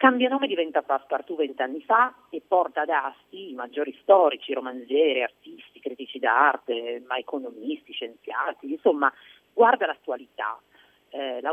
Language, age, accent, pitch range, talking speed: Italian, 40-59, native, 140-200 Hz, 130 wpm